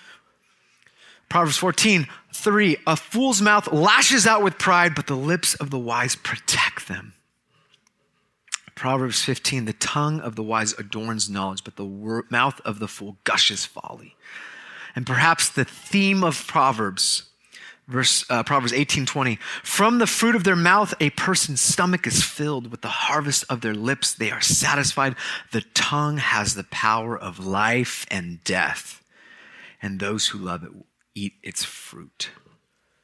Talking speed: 155 wpm